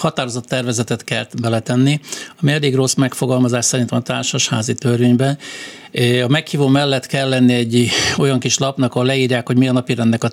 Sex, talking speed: male, 165 wpm